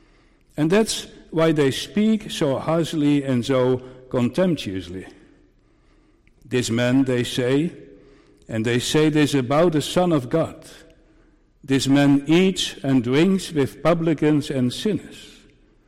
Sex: male